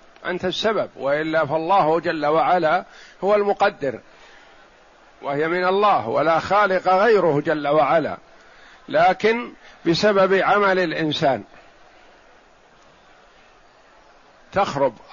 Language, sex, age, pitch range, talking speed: Arabic, male, 50-69, 150-190 Hz, 85 wpm